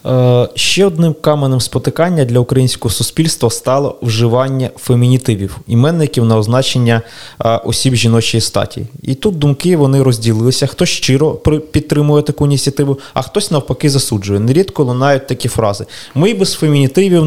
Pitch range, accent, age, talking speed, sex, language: 115-150 Hz, native, 20-39, 135 wpm, male, Ukrainian